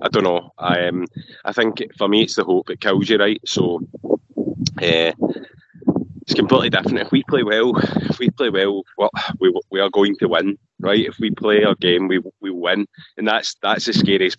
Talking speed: 215 wpm